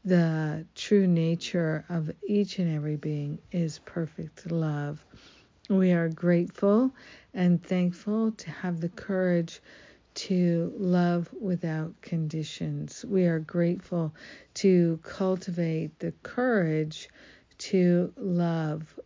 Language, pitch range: English, 155-180 Hz